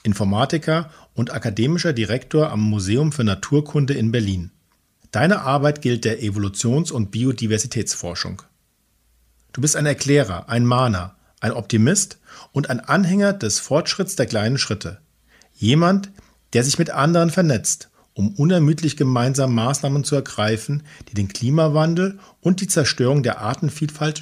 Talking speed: 130 wpm